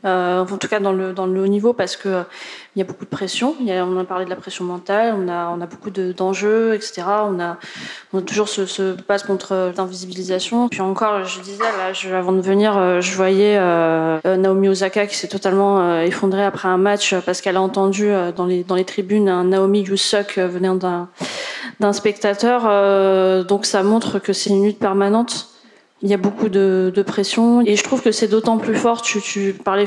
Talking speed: 225 wpm